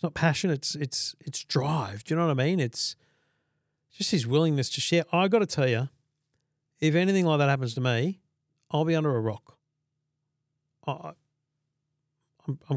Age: 40-59